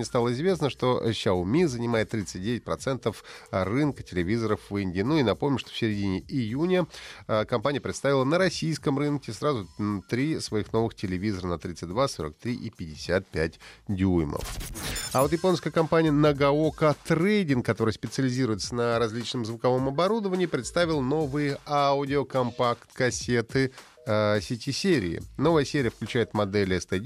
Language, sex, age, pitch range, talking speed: Russian, male, 30-49, 105-145 Hz, 120 wpm